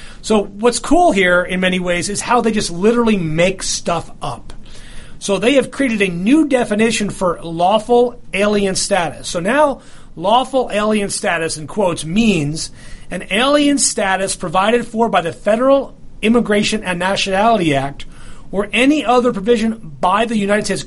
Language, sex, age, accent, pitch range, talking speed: English, male, 40-59, American, 170-225 Hz, 155 wpm